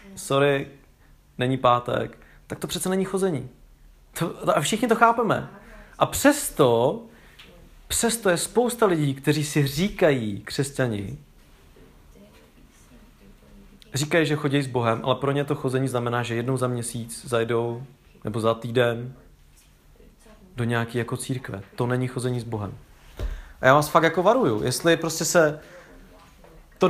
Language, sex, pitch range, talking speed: English, male, 120-160 Hz, 130 wpm